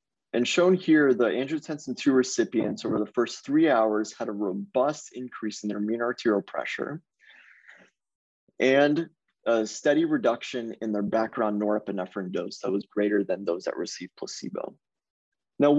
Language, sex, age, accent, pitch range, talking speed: English, male, 20-39, American, 110-145 Hz, 145 wpm